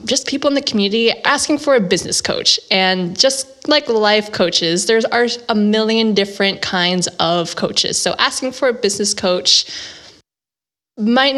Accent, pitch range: American, 180-235 Hz